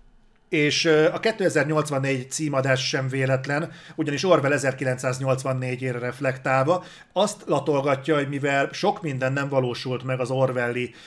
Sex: male